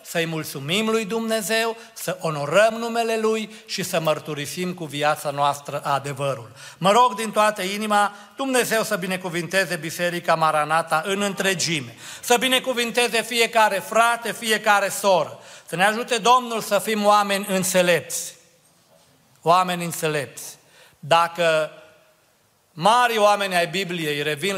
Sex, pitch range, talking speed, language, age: male, 160-220 Hz, 120 wpm, Romanian, 40-59